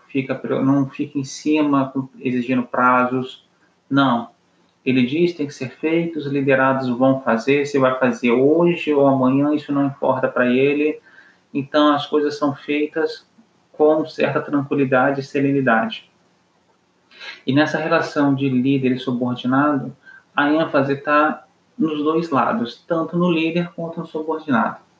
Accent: Brazilian